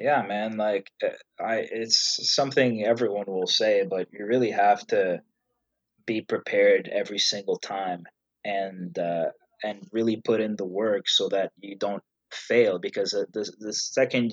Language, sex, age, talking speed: English, male, 20-39, 150 wpm